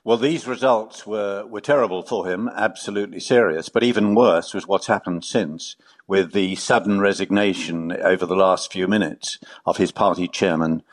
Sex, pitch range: male, 90-110 Hz